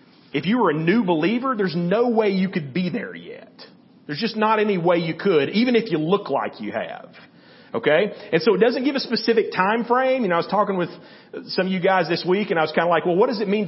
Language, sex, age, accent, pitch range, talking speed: English, male, 40-59, American, 170-235 Hz, 270 wpm